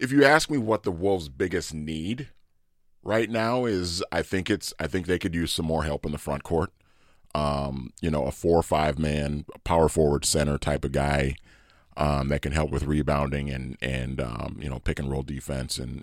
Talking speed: 215 wpm